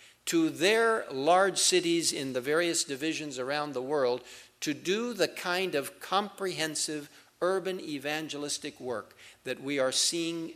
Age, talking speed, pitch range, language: 50-69, 135 wpm, 120-150 Hz, English